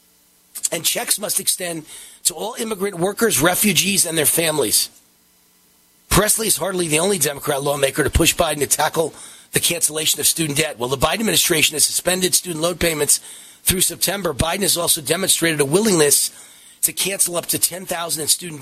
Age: 40-59